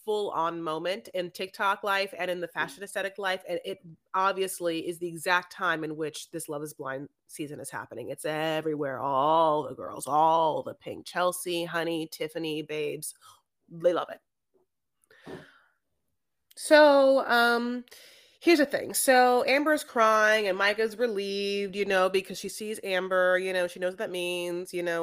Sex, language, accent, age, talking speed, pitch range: female, English, American, 30-49, 170 wpm, 170-230 Hz